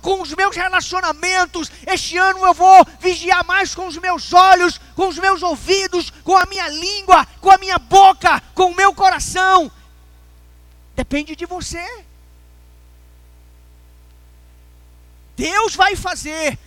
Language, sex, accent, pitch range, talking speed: Portuguese, male, Brazilian, 290-375 Hz, 130 wpm